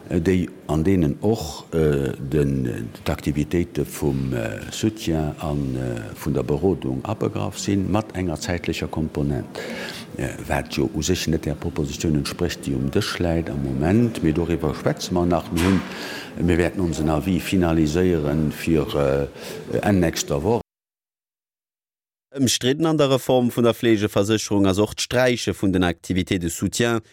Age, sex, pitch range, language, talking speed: 50-69, male, 85-110 Hz, English, 150 wpm